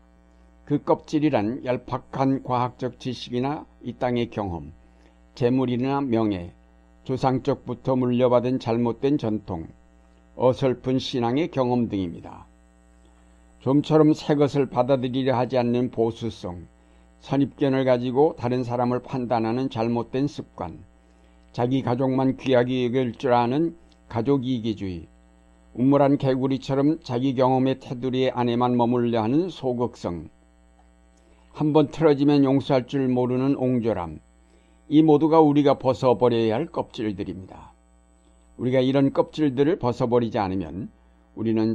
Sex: male